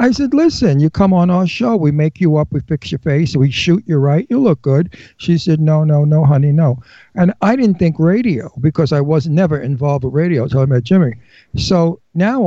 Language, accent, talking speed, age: English, American, 230 wpm, 60-79